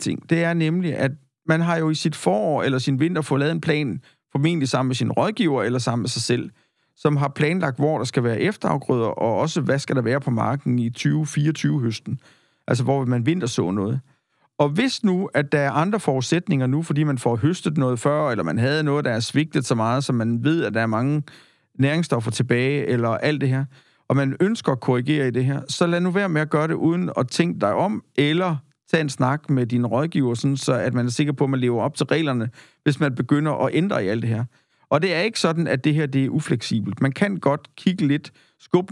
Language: Danish